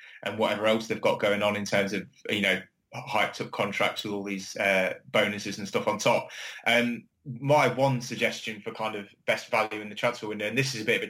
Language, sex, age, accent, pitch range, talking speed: English, male, 20-39, British, 105-120 Hz, 240 wpm